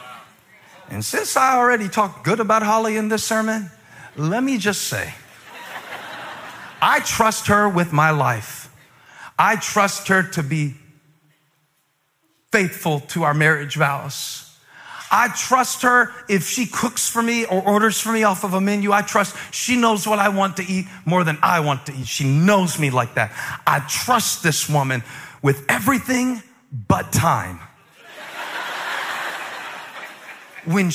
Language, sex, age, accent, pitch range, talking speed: English, male, 40-59, American, 155-235 Hz, 145 wpm